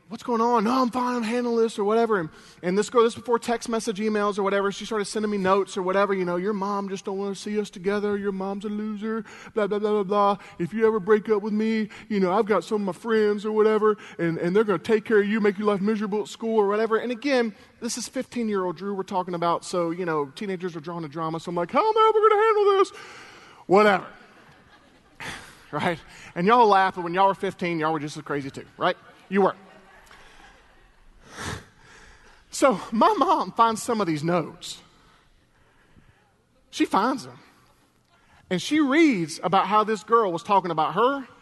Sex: male